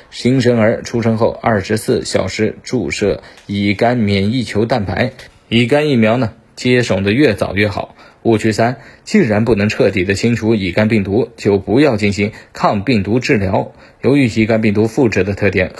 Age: 20-39